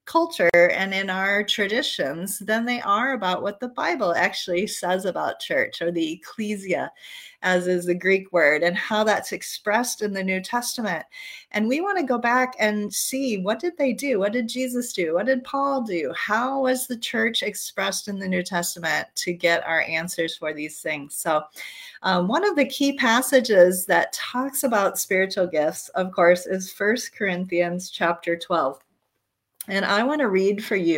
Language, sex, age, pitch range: English, female, 30-49, 180-245 Hz